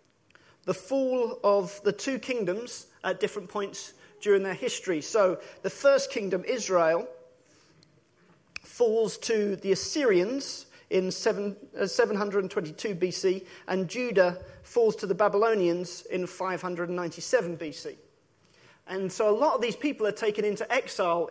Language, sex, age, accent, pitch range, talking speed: English, male, 40-59, British, 185-240 Hz, 125 wpm